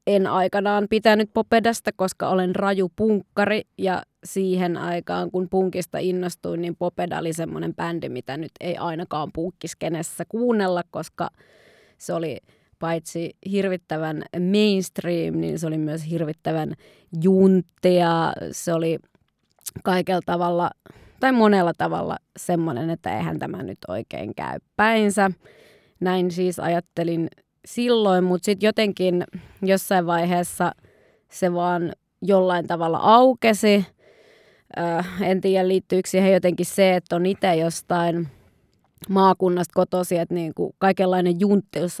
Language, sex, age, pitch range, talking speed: Finnish, female, 20-39, 170-195 Hz, 115 wpm